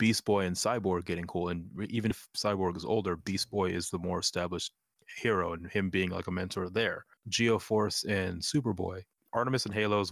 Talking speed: 200 wpm